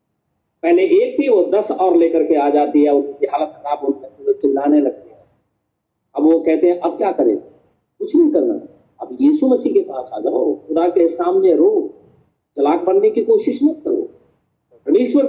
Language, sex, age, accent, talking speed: Hindi, male, 50-69, native, 165 wpm